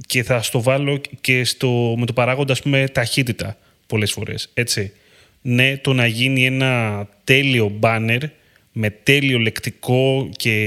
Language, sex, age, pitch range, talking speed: Greek, male, 30-49, 110-140 Hz, 125 wpm